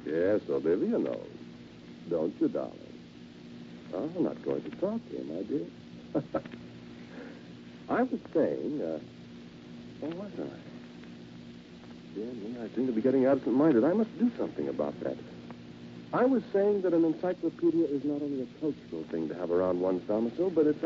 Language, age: English, 60-79